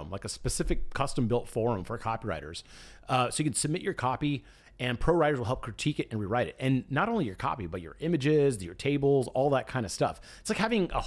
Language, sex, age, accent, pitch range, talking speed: English, male, 30-49, American, 110-140 Hz, 235 wpm